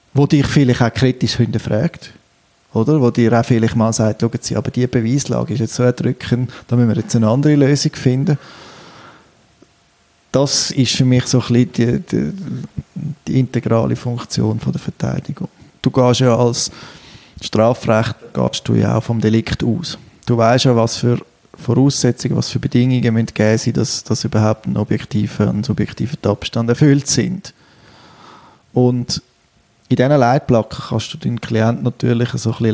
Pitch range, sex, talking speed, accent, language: 110-135 Hz, male, 160 wpm, Austrian, German